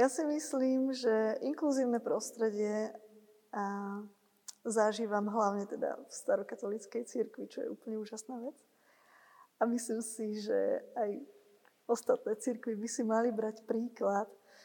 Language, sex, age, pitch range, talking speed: Slovak, female, 20-39, 215-240 Hz, 120 wpm